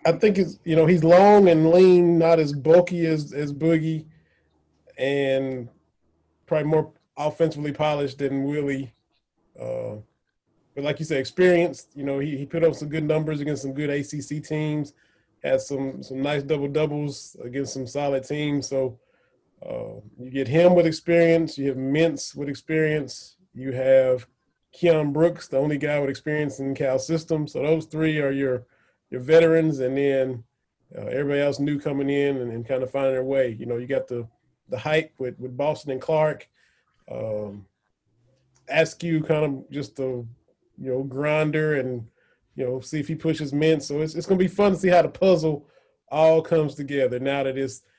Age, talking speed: 20-39, 185 wpm